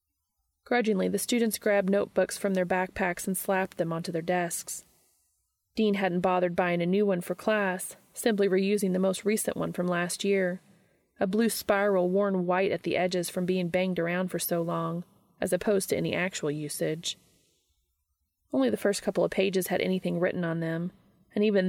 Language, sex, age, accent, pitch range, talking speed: English, female, 30-49, American, 170-205 Hz, 185 wpm